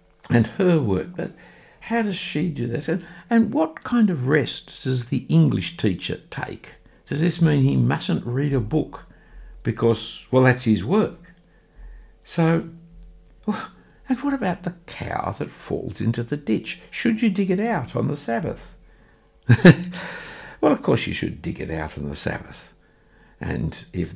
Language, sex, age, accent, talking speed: English, male, 60-79, Australian, 160 wpm